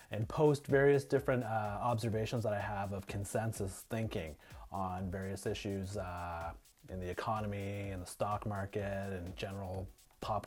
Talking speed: 150 wpm